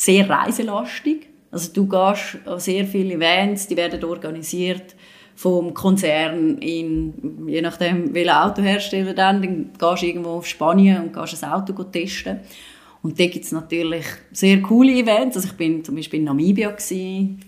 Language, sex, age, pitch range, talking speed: German, female, 30-49, 165-195 Hz, 155 wpm